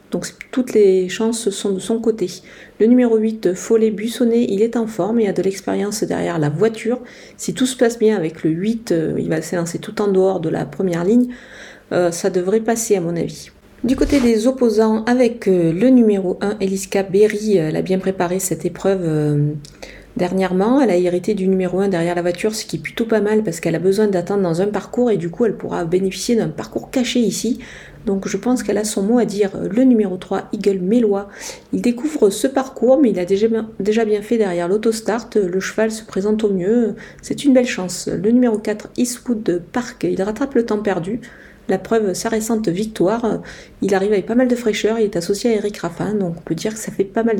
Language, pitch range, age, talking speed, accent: French, 190-230 Hz, 40-59, 220 wpm, French